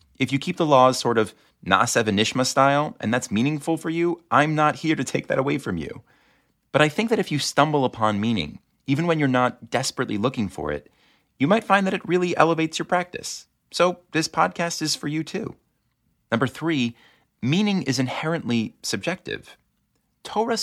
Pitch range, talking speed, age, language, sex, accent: 105-155 Hz, 185 wpm, 30-49, English, male, American